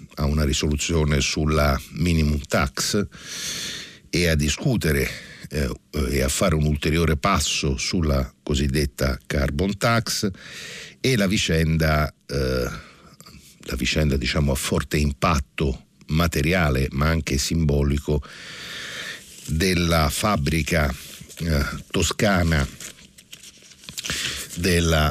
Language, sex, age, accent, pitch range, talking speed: Italian, male, 60-79, native, 75-90 Hz, 95 wpm